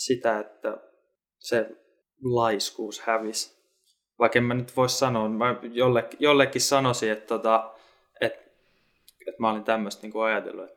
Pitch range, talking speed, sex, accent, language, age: 110-135 Hz, 130 wpm, male, native, Finnish, 20-39